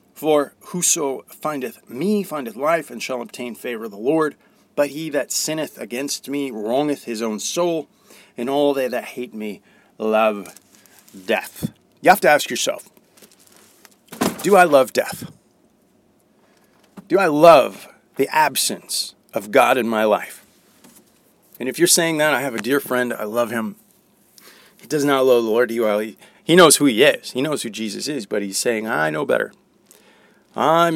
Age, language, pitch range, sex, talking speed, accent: 40-59, English, 120-175 Hz, male, 165 wpm, American